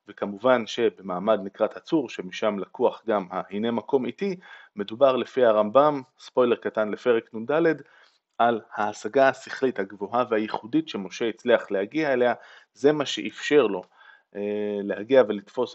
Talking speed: 120 wpm